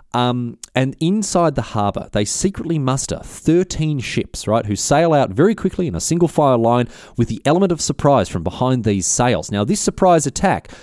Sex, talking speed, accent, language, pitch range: male, 185 wpm, Australian, English, 100-135 Hz